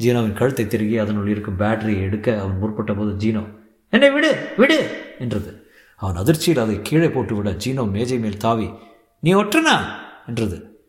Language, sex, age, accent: Tamil, male, 50-69, native